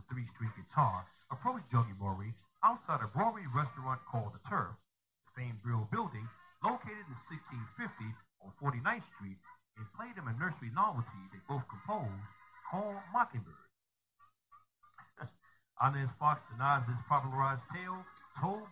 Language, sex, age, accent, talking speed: English, male, 60-79, American, 130 wpm